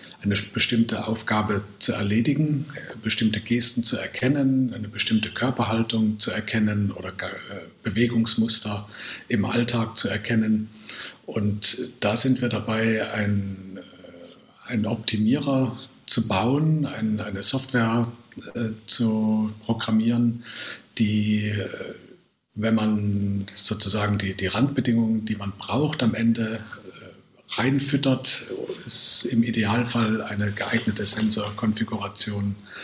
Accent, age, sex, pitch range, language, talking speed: German, 60-79, male, 105-120 Hz, German, 95 wpm